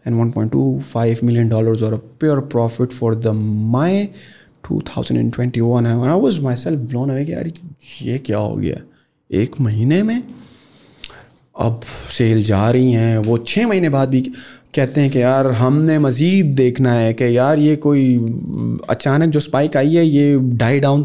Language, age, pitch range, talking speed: English, 30-49, 115-155 Hz, 125 wpm